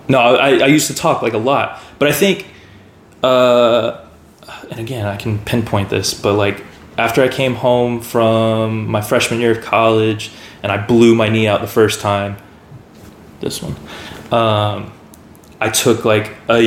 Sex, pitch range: male, 110-125 Hz